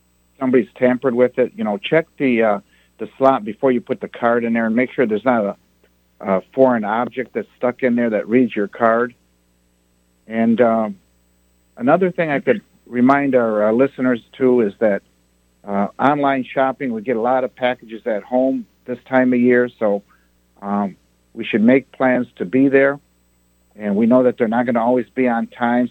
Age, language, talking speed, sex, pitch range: 60-79, Arabic, 195 wpm, male, 95-125 Hz